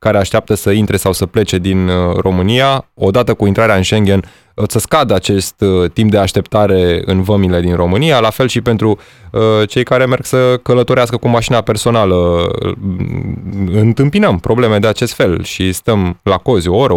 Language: Romanian